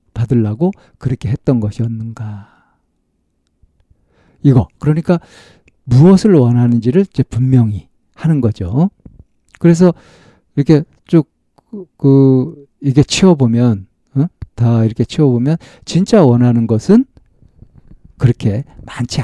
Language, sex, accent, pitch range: Korean, male, native, 110-155 Hz